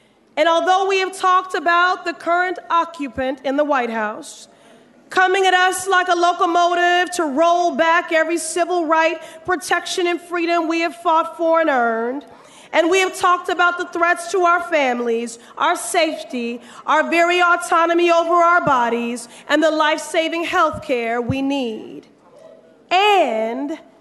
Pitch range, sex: 295-360 Hz, female